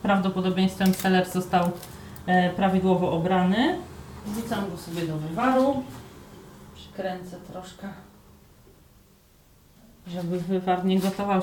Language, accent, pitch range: Polish, native, 170-195 Hz